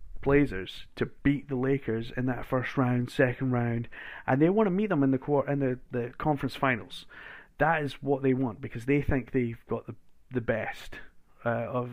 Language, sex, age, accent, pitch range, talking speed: English, male, 30-49, British, 120-140 Hz, 200 wpm